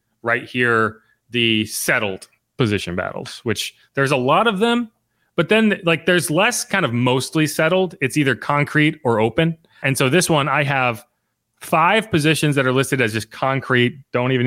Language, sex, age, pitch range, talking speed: English, male, 30-49, 105-145 Hz, 175 wpm